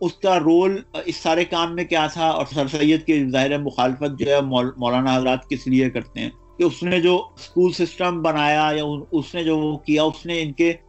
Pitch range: 150-180 Hz